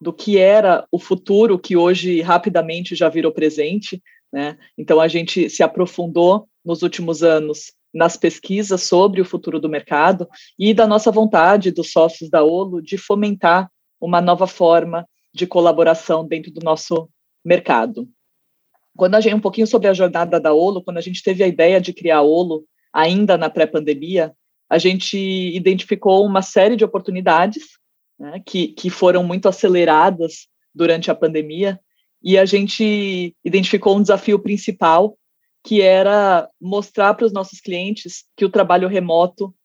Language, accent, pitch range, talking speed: Portuguese, Brazilian, 165-195 Hz, 155 wpm